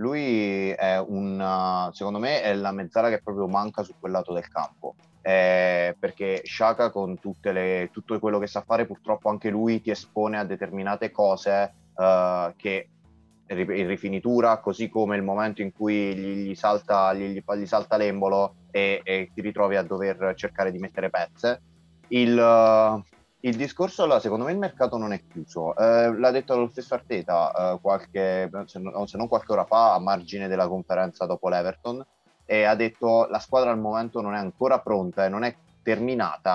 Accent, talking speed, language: native, 180 wpm, Italian